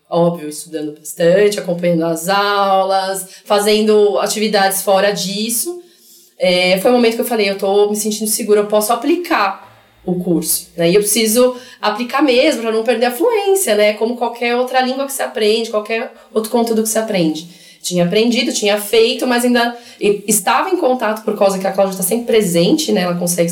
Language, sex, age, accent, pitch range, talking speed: Portuguese, female, 20-39, Brazilian, 180-230 Hz, 180 wpm